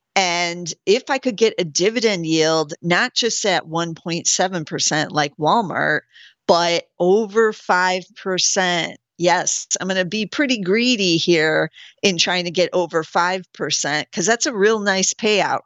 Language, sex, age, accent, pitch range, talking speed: English, female, 50-69, American, 170-225 Hz, 140 wpm